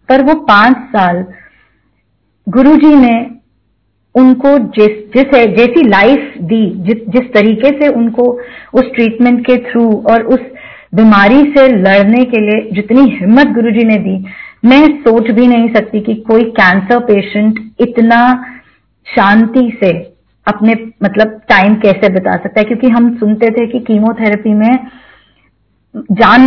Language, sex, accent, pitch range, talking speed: Hindi, female, native, 205-250 Hz, 135 wpm